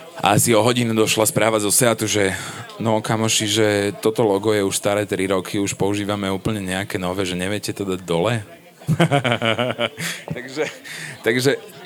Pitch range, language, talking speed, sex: 100-120 Hz, Slovak, 155 wpm, male